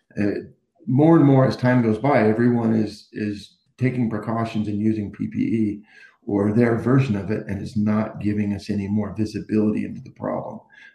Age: 50-69